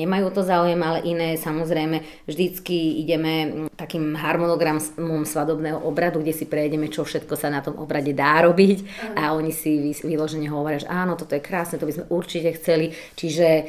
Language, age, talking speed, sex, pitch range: Slovak, 30-49, 170 wpm, female, 155-170 Hz